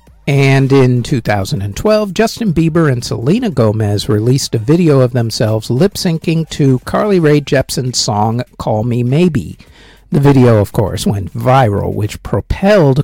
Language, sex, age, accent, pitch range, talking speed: English, male, 50-69, American, 115-160 Hz, 140 wpm